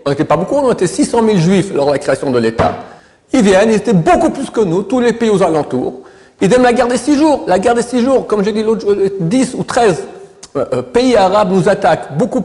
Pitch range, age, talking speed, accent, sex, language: 160-250 Hz, 60-79, 255 wpm, French, male, French